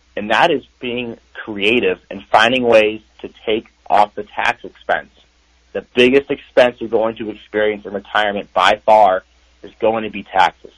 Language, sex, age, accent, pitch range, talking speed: English, male, 30-49, American, 95-120 Hz, 165 wpm